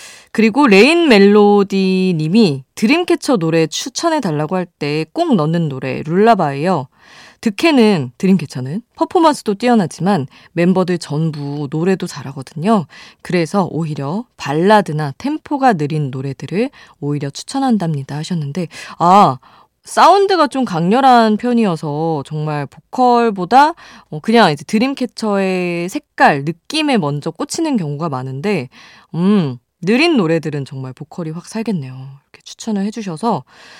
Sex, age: female, 20-39